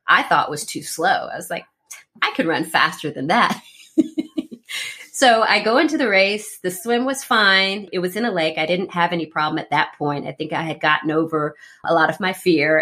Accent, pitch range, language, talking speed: American, 160-205 Hz, English, 225 wpm